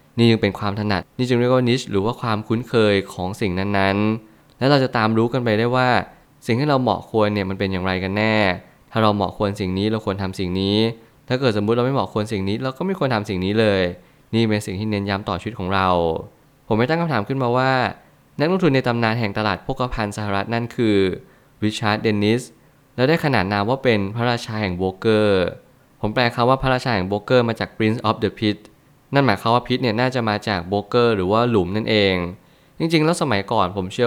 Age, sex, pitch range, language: 20-39, male, 100-125 Hz, Thai